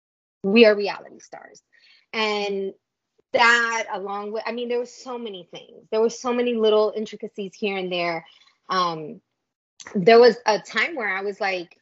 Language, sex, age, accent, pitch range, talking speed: English, female, 20-39, American, 200-260 Hz, 170 wpm